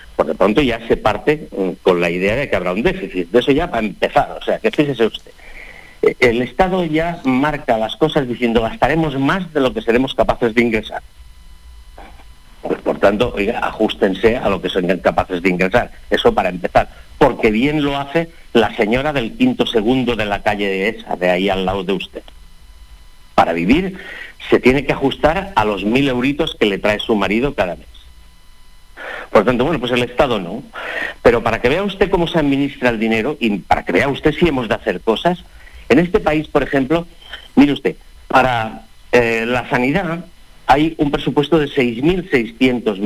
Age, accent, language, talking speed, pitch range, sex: 50-69, Spanish, Spanish, 190 wpm, 105-150 Hz, male